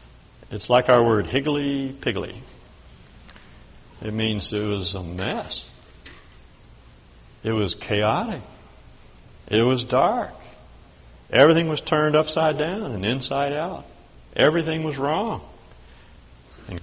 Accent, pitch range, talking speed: American, 90-120 Hz, 105 wpm